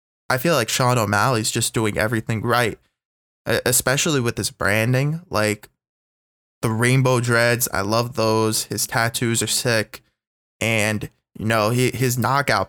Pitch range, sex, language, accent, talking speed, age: 110-125 Hz, male, English, American, 140 wpm, 20-39